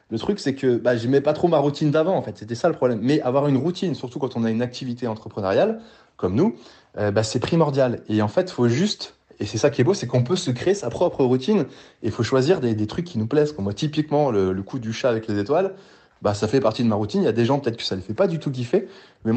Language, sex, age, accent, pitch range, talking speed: French, male, 20-39, French, 115-170 Hz, 295 wpm